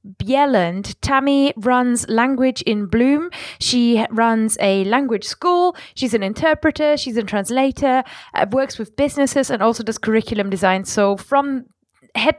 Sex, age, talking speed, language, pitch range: female, 20-39, 140 wpm, English, 225-275 Hz